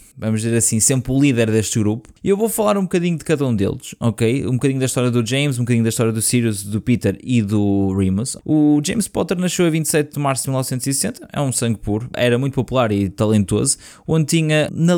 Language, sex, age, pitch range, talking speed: Portuguese, male, 20-39, 105-135 Hz, 230 wpm